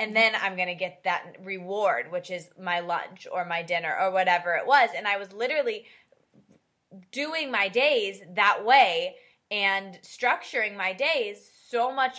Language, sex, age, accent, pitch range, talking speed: English, female, 20-39, American, 190-260 Hz, 165 wpm